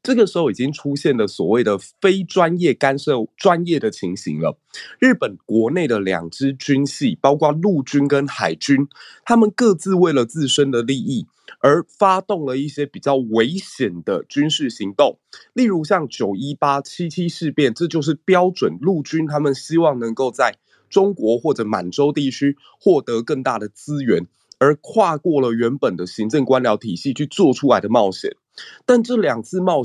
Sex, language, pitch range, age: male, Chinese, 120-185 Hz, 20-39